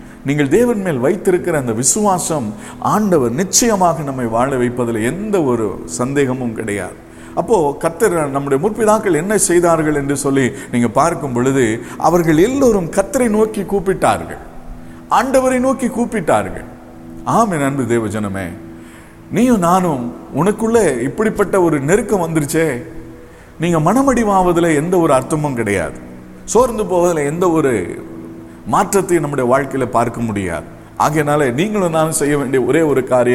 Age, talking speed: 50-69, 115 wpm